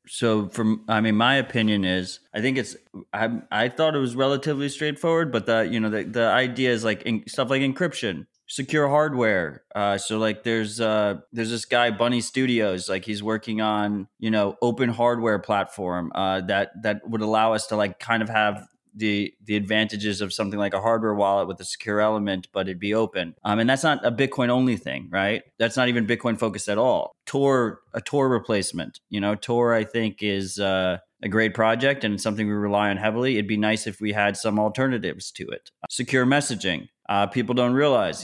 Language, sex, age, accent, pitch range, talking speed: English, male, 20-39, American, 105-120 Hz, 205 wpm